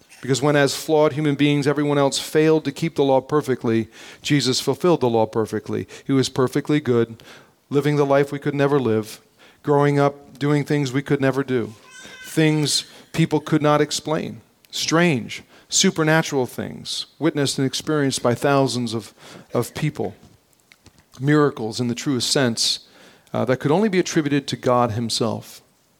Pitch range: 125-145 Hz